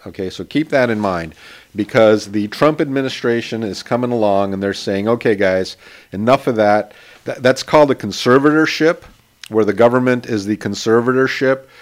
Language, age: English, 40-59